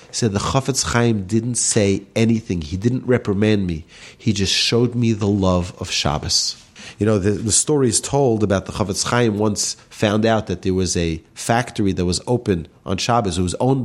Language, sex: English, male